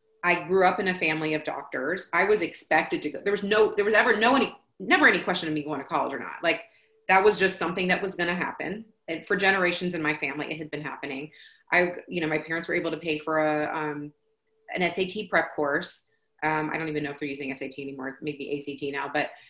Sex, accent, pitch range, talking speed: female, American, 155-210 Hz, 250 wpm